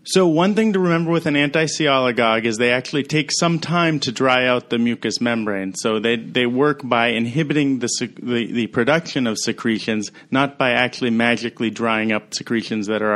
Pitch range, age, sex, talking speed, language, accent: 110-140 Hz, 30-49, male, 185 wpm, English, American